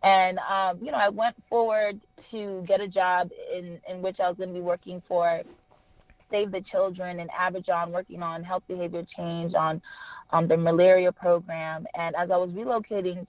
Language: English